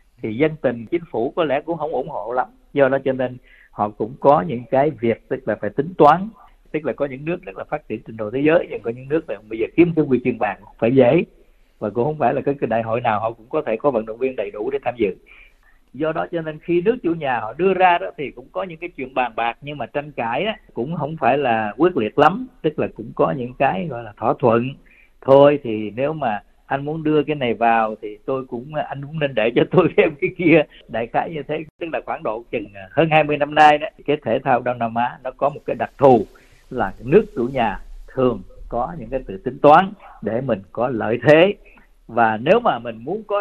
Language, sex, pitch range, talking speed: Vietnamese, male, 115-155 Hz, 260 wpm